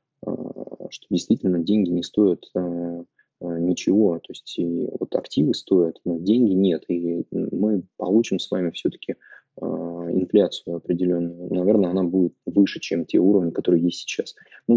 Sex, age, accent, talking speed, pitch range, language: male, 20-39, native, 140 wpm, 85-95 Hz, Russian